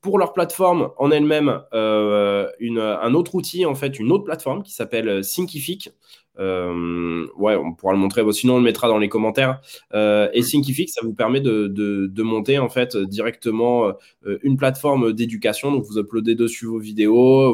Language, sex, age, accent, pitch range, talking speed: French, male, 20-39, French, 105-140 Hz, 180 wpm